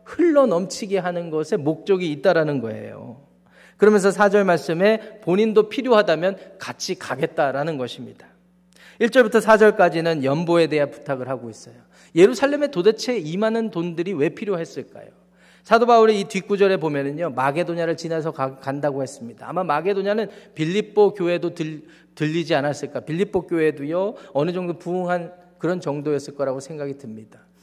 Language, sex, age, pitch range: Korean, male, 40-59, 145-195 Hz